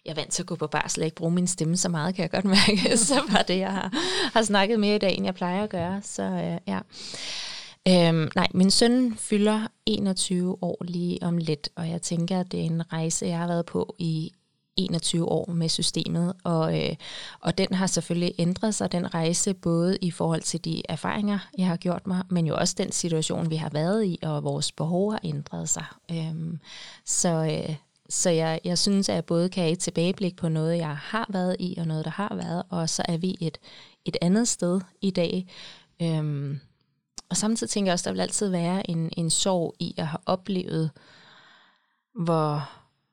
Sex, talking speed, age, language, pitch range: female, 210 wpm, 20-39, Danish, 160-190 Hz